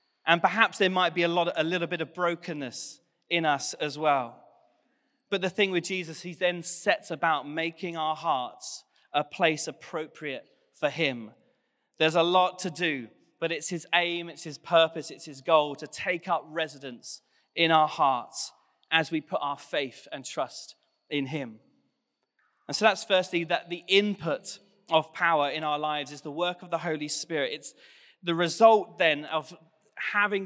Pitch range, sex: 155-185 Hz, male